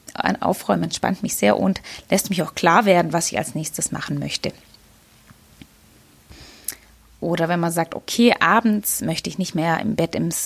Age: 20-39